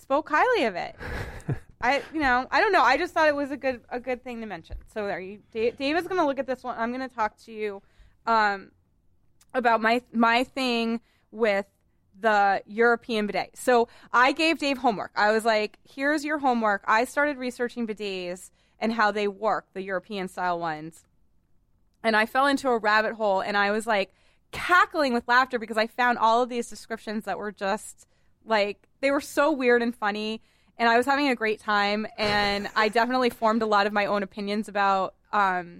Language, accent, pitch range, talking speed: English, American, 205-260 Hz, 200 wpm